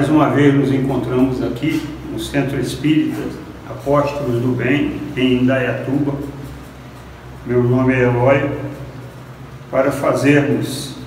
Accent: Brazilian